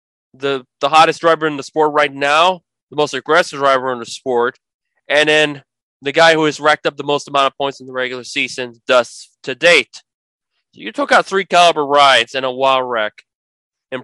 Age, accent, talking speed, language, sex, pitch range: 20-39, American, 205 wpm, English, male, 135-165 Hz